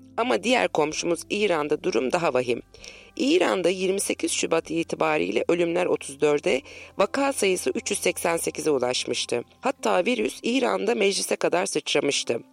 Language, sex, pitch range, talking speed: Turkish, female, 145-235 Hz, 110 wpm